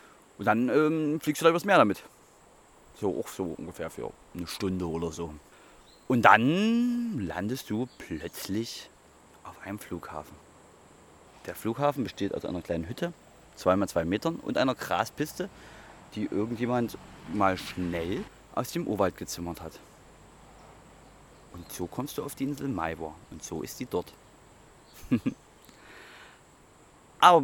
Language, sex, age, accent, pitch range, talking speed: German, male, 30-49, German, 90-135 Hz, 135 wpm